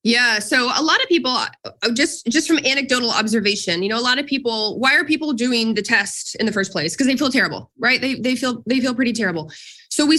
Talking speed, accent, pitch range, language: 240 wpm, American, 190-260 Hz, English